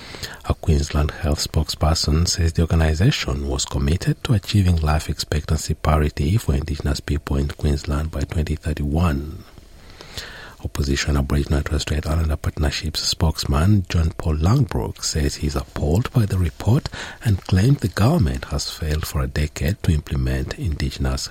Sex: male